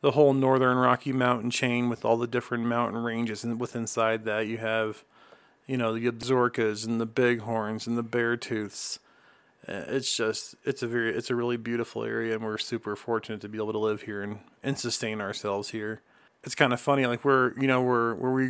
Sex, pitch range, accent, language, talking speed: male, 115-130 Hz, American, English, 210 wpm